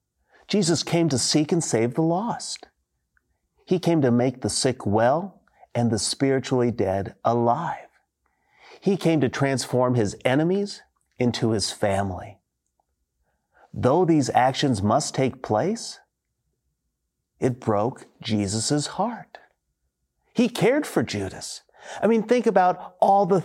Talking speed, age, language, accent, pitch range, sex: 125 wpm, 40-59, English, American, 120-190 Hz, male